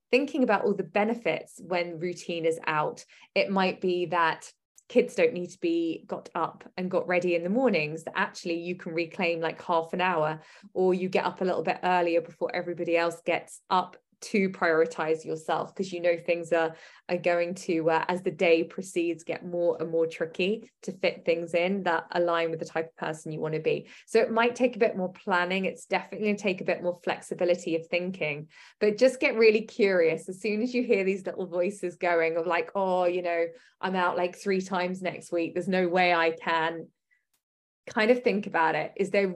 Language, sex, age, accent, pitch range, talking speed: English, female, 20-39, British, 170-195 Hz, 215 wpm